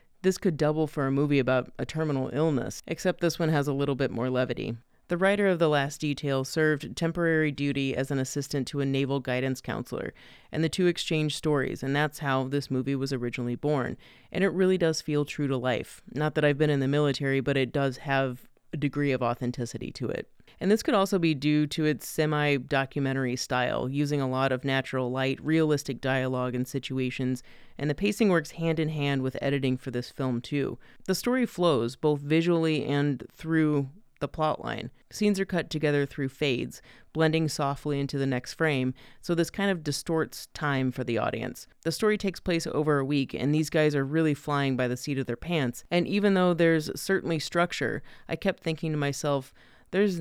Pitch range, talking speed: 130-160 Hz, 195 wpm